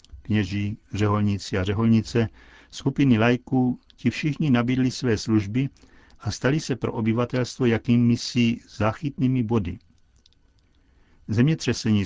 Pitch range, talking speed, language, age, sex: 100-120 Hz, 105 wpm, Czech, 60-79, male